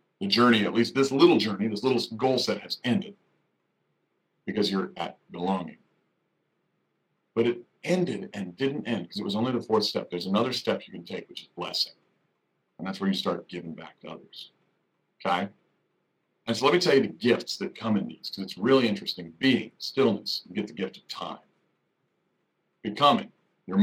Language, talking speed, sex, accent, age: English, 190 wpm, male, American, 50-69